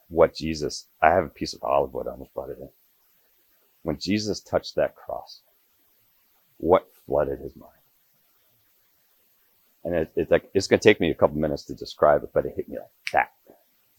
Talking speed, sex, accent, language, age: 195 wpm, male, American, English, 40-59